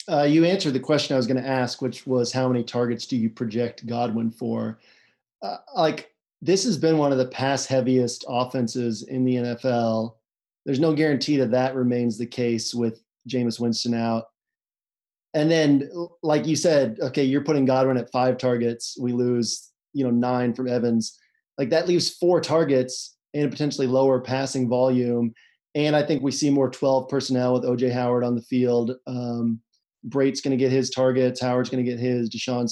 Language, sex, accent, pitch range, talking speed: English, male, American, 125-145 Hz, 190 wpm